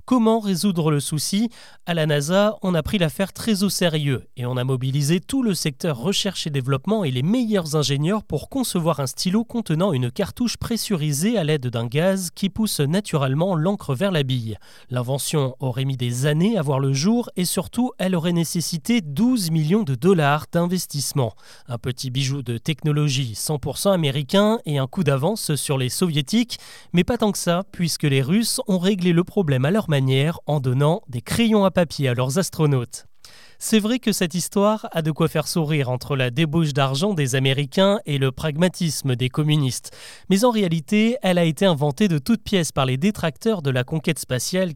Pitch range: 140-195 Hz